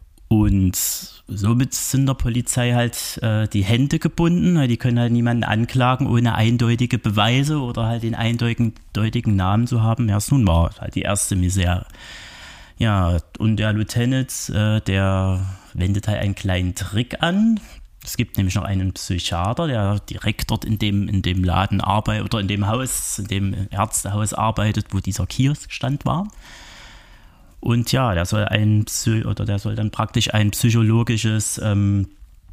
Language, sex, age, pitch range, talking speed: German, male, 30-49, 100-125 Hz, 155 wpm